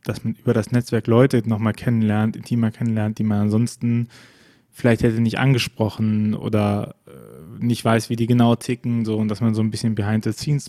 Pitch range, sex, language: 110-125 Hz, male, German